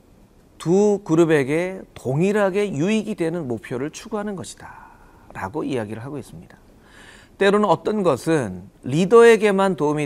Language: Korean